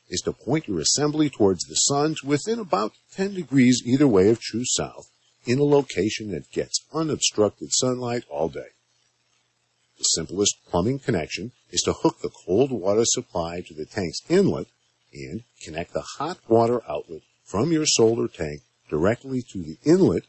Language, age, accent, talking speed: English, 50-69, American, 165 wpm